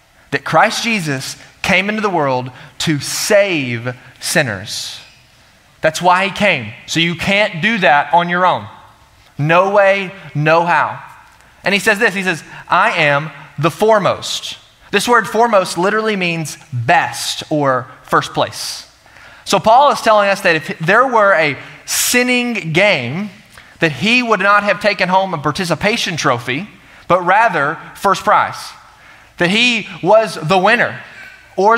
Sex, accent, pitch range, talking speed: male, American, 155-215 Hz, 145 wpm